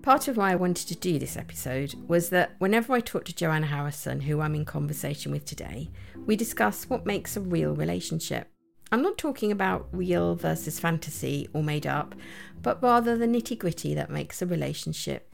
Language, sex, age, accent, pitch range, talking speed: English, female, 50-69, British, 130-185 Hz, 190 wpm